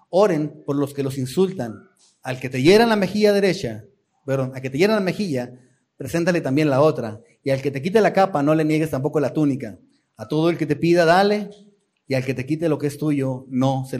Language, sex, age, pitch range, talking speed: Spanish, male, 30-49, 145-195 Hz, 235 wpm